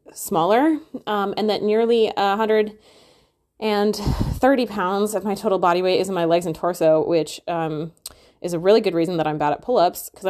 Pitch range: 165-210 Hz